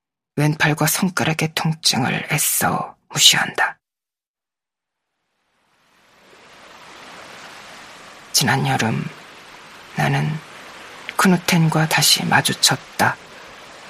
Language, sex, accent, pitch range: Korean, female, native, 150-185 Hz